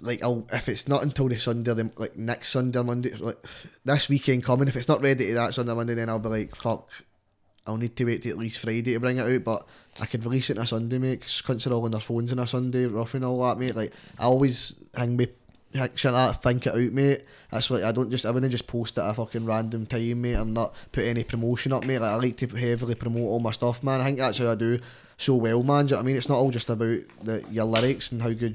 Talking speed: 290 wpm